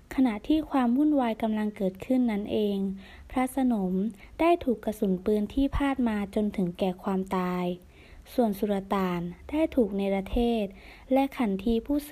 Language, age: Thai, 20-39